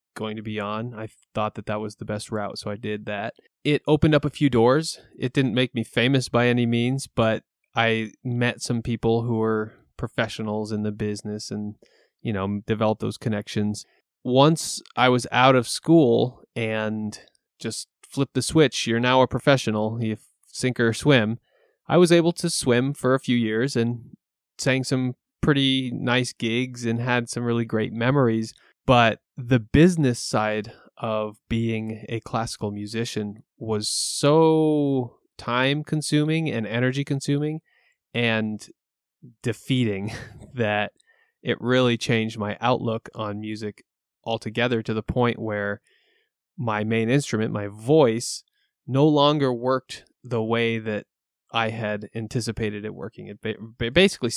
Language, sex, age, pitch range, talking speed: English, male, 20-39, 110-130 Hz, 150 wpm